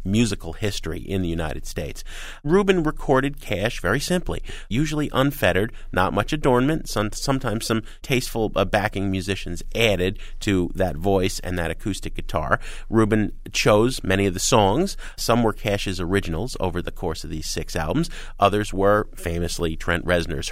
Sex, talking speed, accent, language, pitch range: male, 150 wpm, American, English, 90-125 Hz